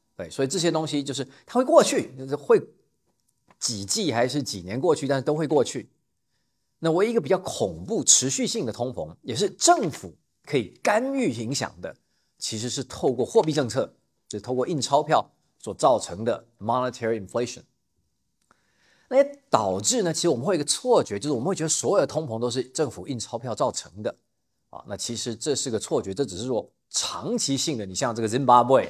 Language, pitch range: Chinese, 110-150 Hz